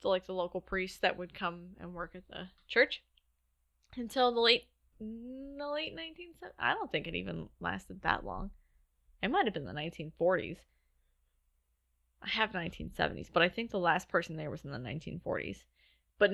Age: 10-29